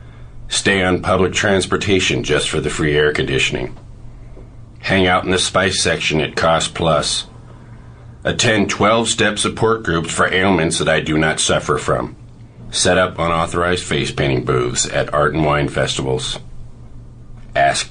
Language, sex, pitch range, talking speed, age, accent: English, male, 80-115 Hz, 145 wpm, 50-69, American